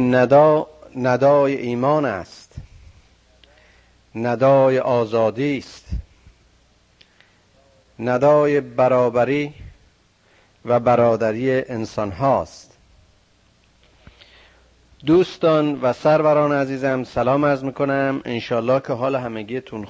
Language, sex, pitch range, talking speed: Persian, male, 120-150 Hz, 75 wpm